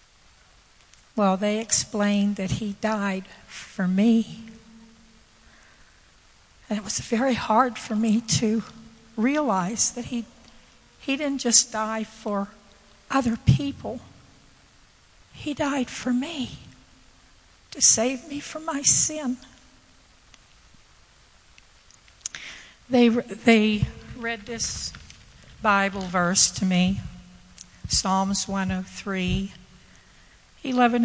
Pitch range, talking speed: 195-235 Hz, 90 wpm